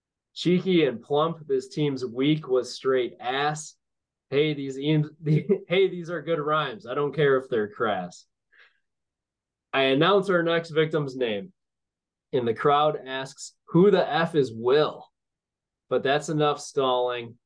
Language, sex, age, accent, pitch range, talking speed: English, male, 20-39, American, 115-150 Hz, 140 wpm